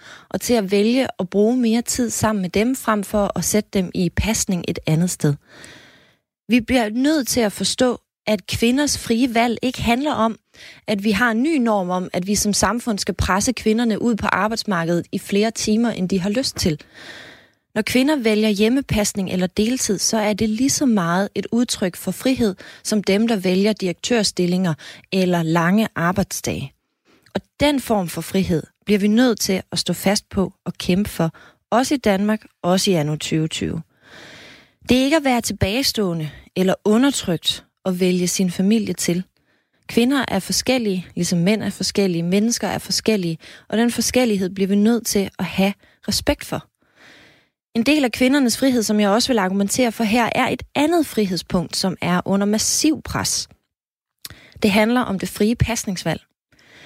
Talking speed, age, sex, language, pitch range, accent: 175 wpm, 30-49, female, Danish, 185-235 Hz, native